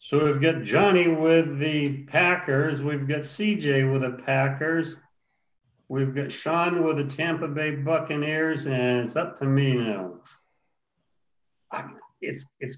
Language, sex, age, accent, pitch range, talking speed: English, male, 60-79, American, 130-150 Hz, 140 wpm